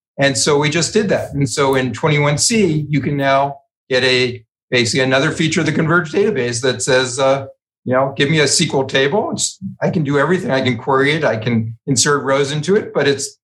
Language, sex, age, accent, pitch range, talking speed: English, male, 50-69, American, 125-155 Hz, 220 wpm